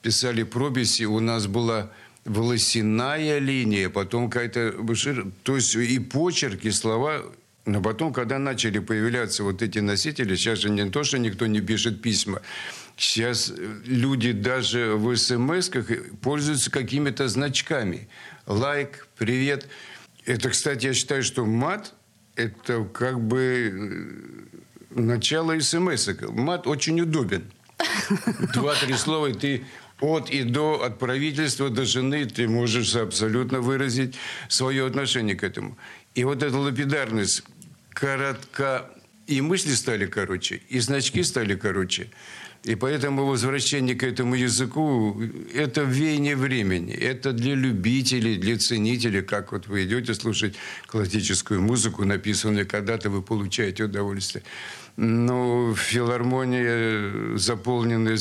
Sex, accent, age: male, native, 60-79